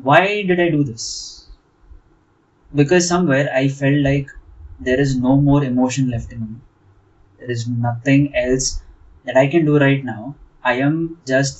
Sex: male